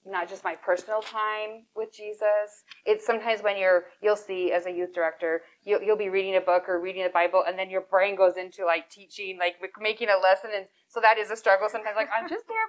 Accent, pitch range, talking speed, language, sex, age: American, 185-275 Hz, 235 wpm, English, female, 20-39